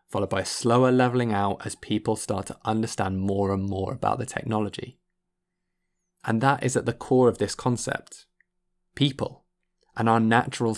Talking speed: 165 wpm